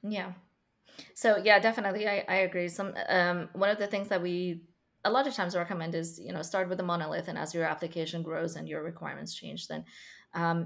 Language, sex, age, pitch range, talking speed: English, female, 20-39, 165-200 Hz, 215 wpm